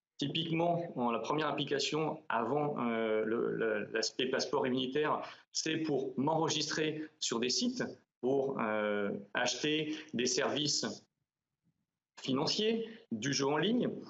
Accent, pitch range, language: French, 140-190 Hz, French